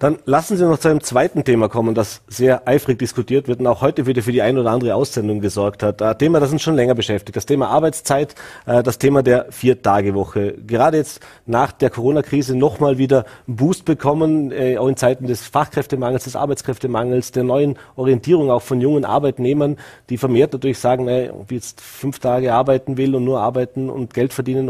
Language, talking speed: German, 200 wpm